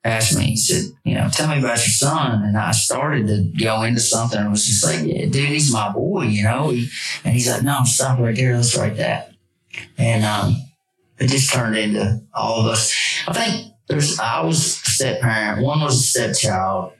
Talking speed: 215 wpm